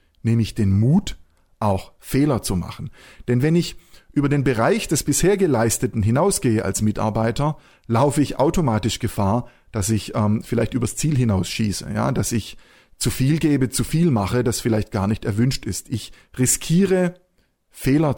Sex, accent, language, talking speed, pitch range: male, German, German, 160 wpm, 110-145 Hz